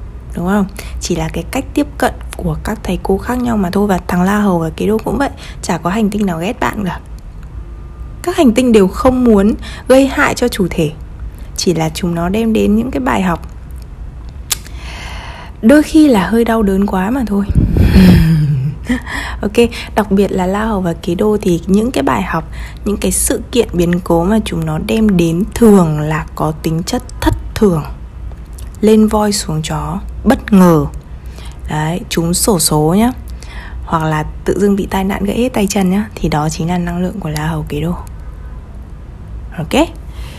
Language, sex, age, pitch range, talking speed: Vietnamese, female, 20-39, 155-210 Hz, 195 wpm